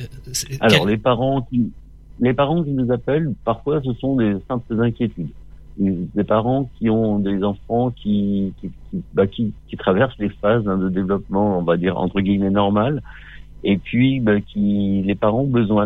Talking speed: 180 wpm